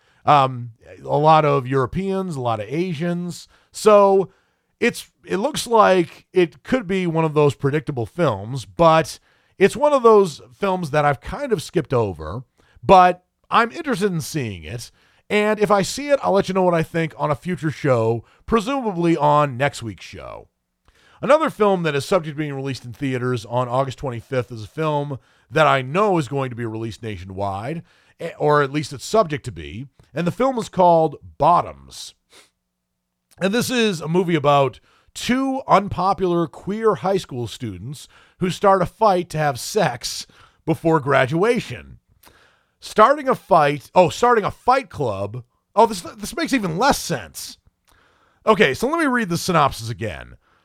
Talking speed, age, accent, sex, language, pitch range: 170 wpm, 40-59, American, male, English, 130-195 Hz